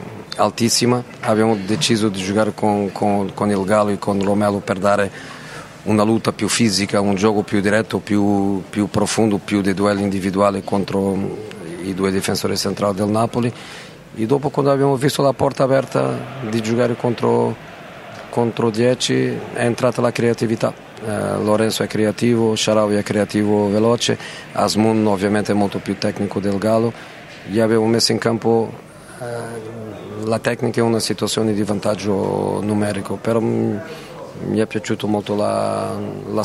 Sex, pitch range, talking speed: male, 100-115 Hz, 150 wpm